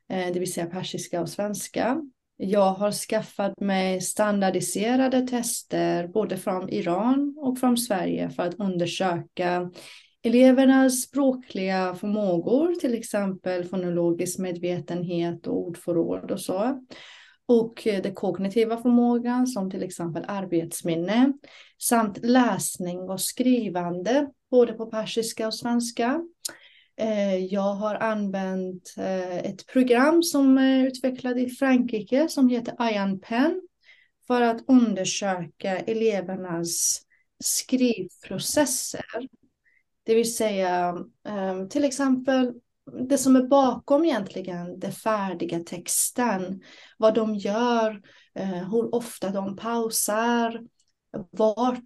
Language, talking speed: Swedish, 100 wpm